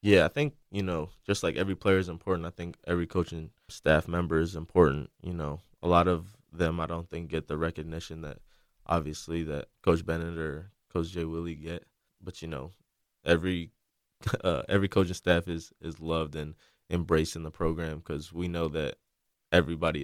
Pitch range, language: 80-90 Hz, English